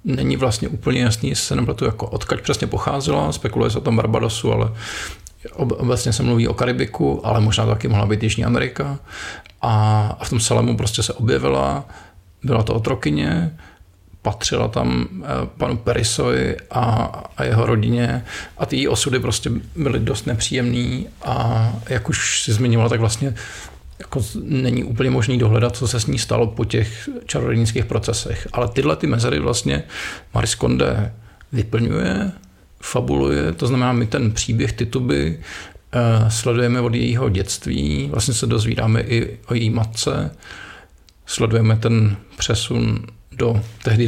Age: 40-59